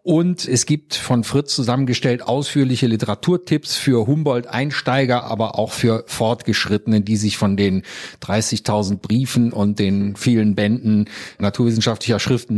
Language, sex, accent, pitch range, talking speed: German, male, German, 115-145 Hz, 125 wpm